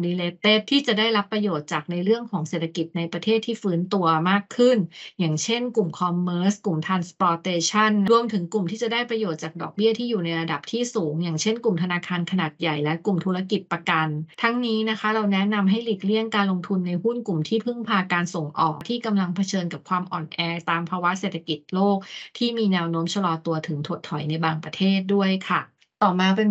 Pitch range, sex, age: 170-215 Hz, female, 20-39